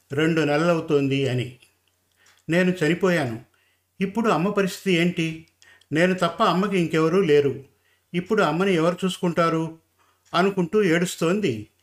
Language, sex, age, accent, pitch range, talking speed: Telugu, male, 50-69, native, 125-185 Hz, 100 wpm